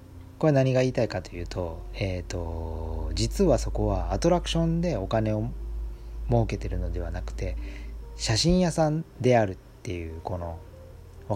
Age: 40-59